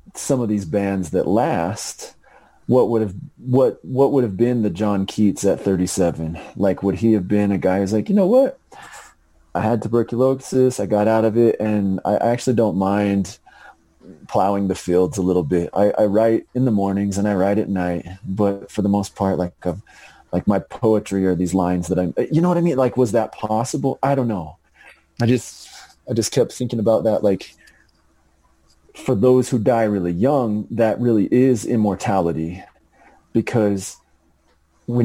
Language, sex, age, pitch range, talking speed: English, male, 30-49, 95-115 Hz, 185 wpm